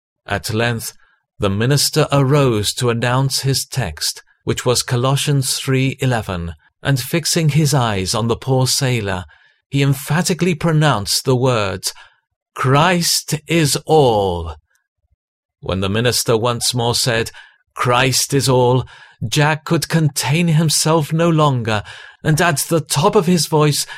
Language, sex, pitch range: English, male, 115-150 Hz